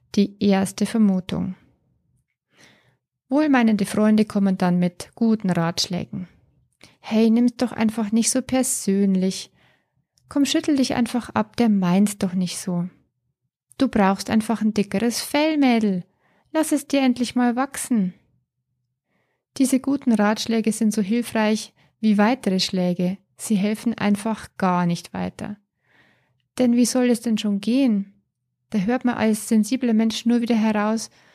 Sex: female